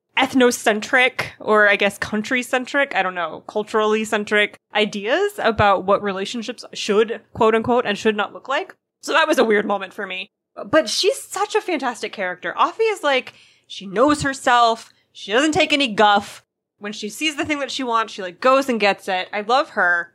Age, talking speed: 20-39, 195 wpm